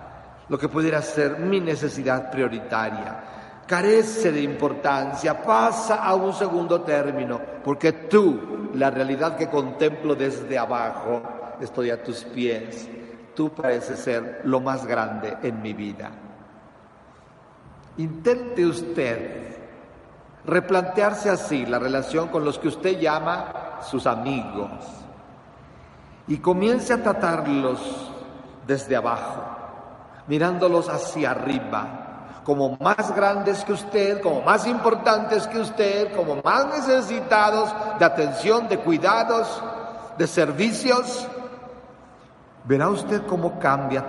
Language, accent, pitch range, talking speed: Spanish, Mexican, 125-205 Hz, 110 wpm